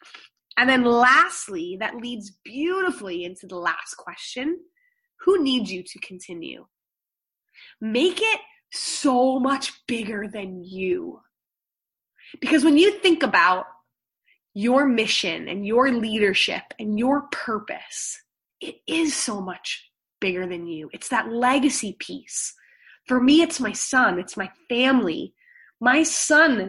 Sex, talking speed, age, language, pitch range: female, 125 wpm, 20-39, English, 200-285 Hz